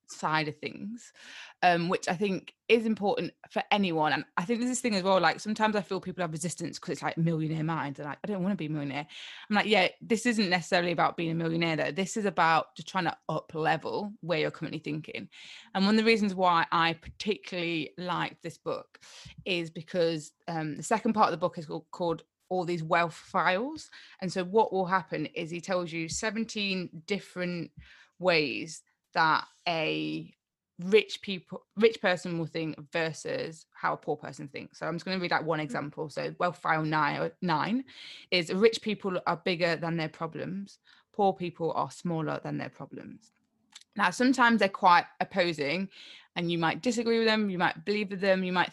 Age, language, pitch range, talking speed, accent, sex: 20-39, English, 165-205 Hz, 200 wpm, British, female